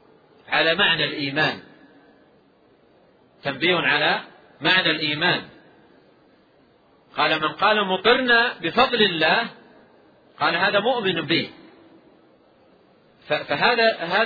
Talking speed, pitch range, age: 75 wpm, 165-220 Hz, 40-59